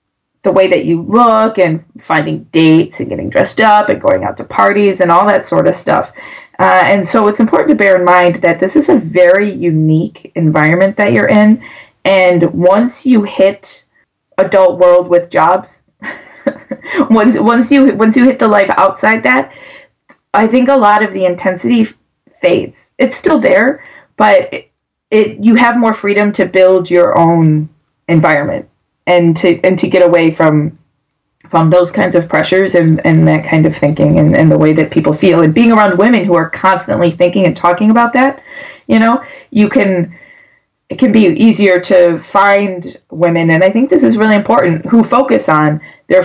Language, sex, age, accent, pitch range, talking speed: English, female, 20-39, American, 170-230 Hz, 185 wpm